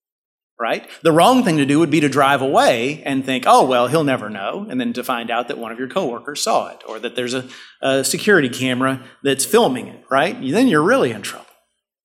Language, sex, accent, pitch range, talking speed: English, male, American, 120-160 Hz, 230 wpm